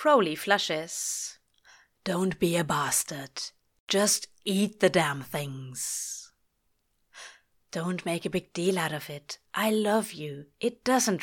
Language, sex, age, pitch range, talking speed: English, female, 30-49, 175-245 Hz, 130 wpm